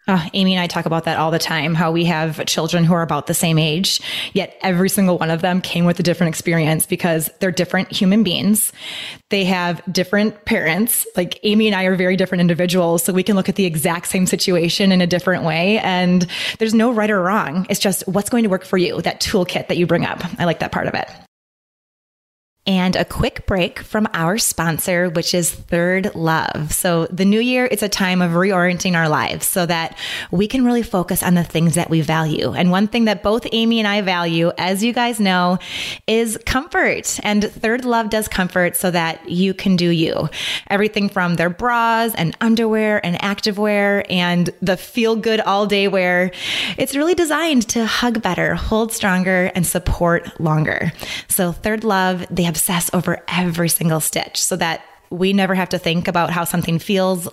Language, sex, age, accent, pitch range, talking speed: English, female, 20-39, American, 170-205 Hz, 200 wpm